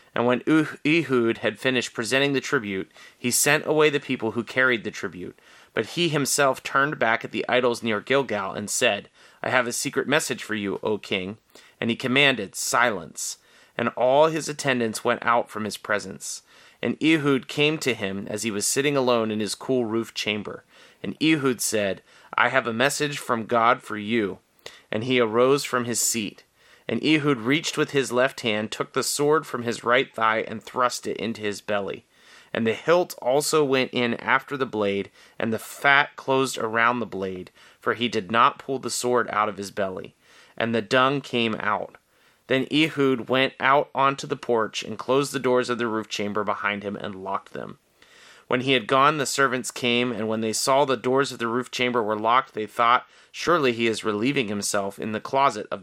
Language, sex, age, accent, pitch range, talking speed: English, male, 30-49, American, 110-135 Hz, 200 wpm